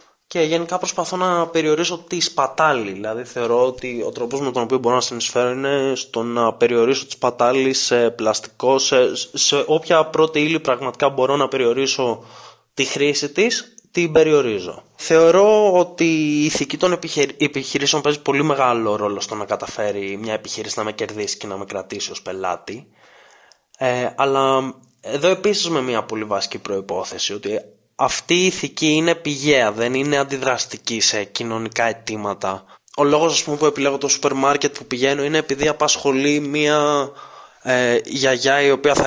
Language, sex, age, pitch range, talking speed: Greek, male, 20-39, 120-160 Hz, 160 wpm